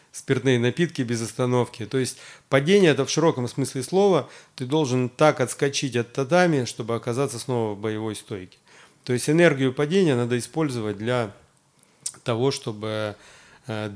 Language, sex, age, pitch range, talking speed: Russian, male, 30-49, 110-135 Hz, 150 wpm